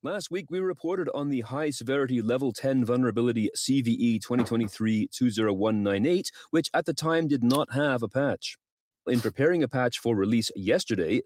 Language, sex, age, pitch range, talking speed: English, male, 30-49, 110-155 Hz, 150 wpm